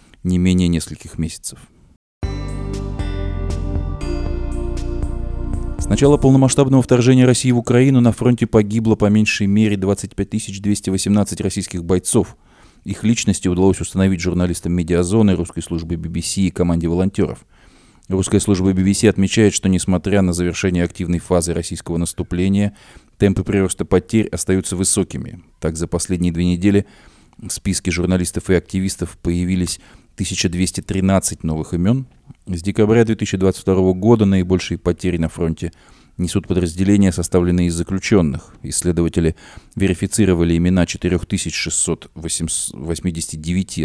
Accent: native